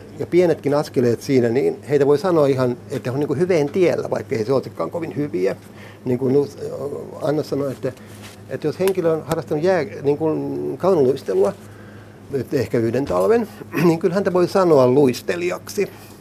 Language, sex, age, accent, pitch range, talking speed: Finnish, male, 60-79, native, 105-150 Hz, 160 wpm